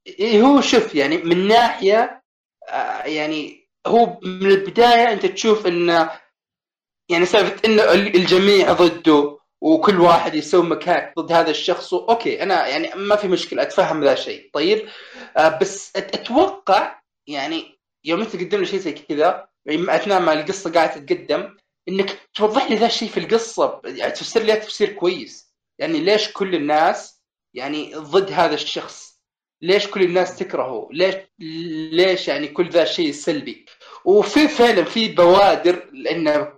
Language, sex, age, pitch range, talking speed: Arabic, male, 20-39, 165-230 Hz, 145 wpm